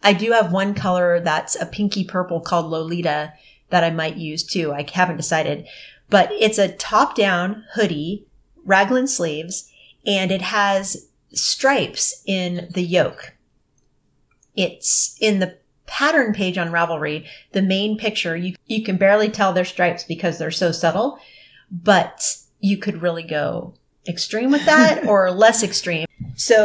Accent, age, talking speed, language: American, 30-49, 150 wpm, English